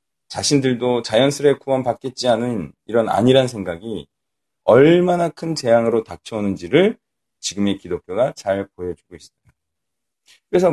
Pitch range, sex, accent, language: 115-165 Hz, male, native, Korean